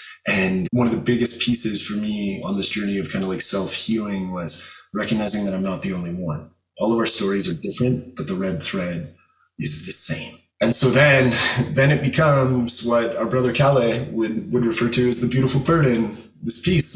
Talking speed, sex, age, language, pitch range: 200 wpm, male, 20-39, English, 105-125 Hz